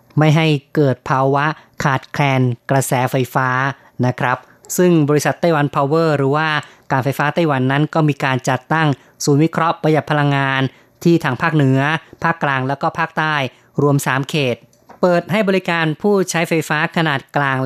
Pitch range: 135-160 Hz